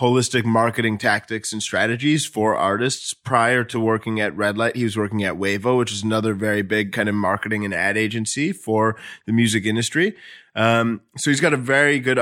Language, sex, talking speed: English, male, 195 wpm